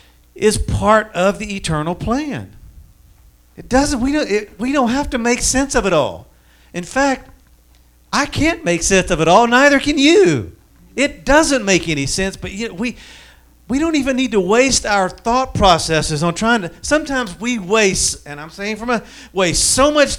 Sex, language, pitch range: male, English, 160-240 Hz